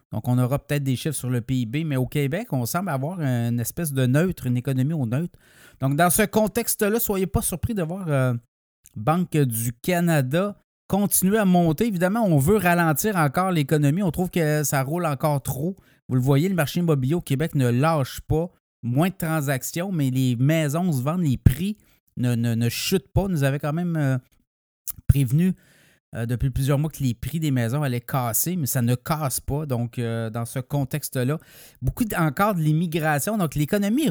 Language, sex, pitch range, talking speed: French, male, 130-175 Hz, 195 wpm